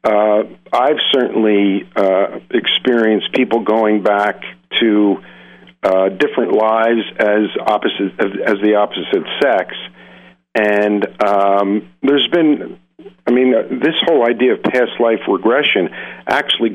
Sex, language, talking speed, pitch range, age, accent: male, English, 120 wpm, 100-115 Hz, 50-69, American